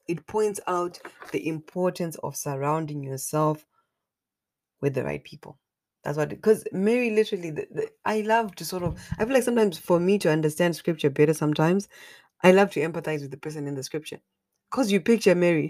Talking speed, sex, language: 180 wpm, female, English